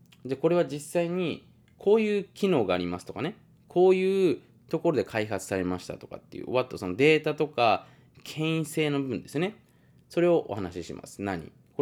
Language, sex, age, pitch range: Japanese, male, 20-39, 115-165 Hz